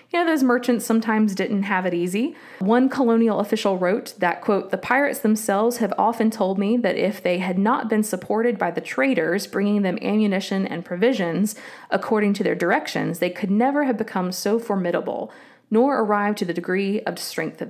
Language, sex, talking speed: English, female, 190 wpm